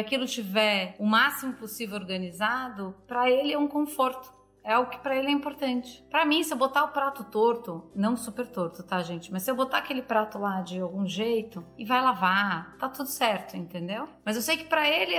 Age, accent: 30-49, Brazilian